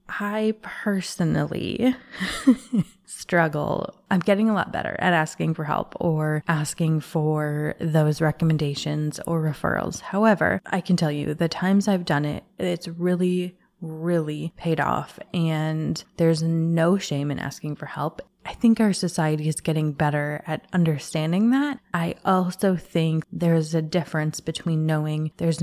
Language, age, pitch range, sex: English, 20-39, 155-185 Hz, female